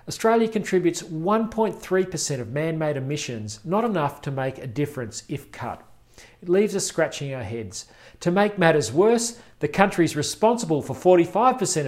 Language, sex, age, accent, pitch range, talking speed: English, male, 40-59, Australian, 130-175 Hz, 145 wpm